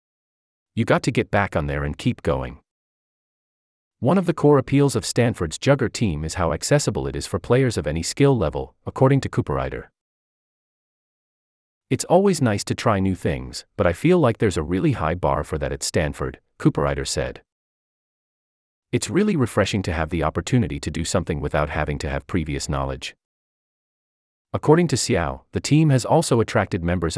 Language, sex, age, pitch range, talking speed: English, male, 30-49, 80-125 Hz, 175 wpm